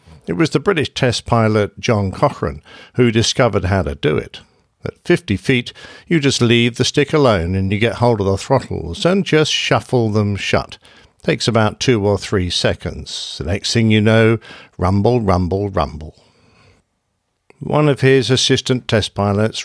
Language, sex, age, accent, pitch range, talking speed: English, male, 50-69, British, 100-130 Hz, 170 wpm